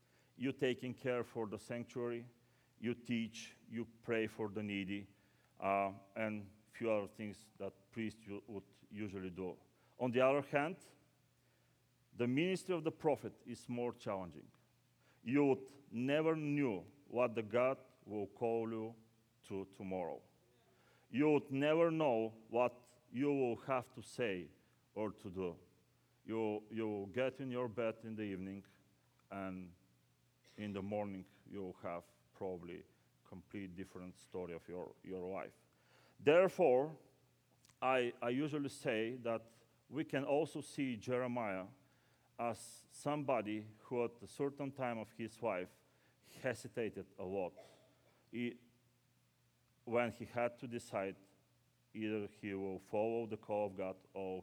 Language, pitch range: English, 95-125 Hz